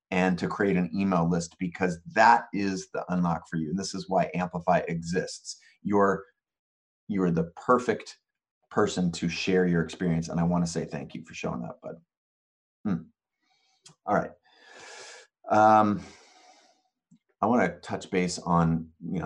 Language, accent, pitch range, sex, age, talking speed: English, American, 85-95 Hz, male, 30-49, 155 wpm